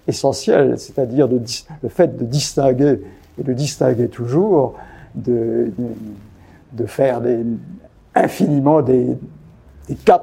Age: 60-79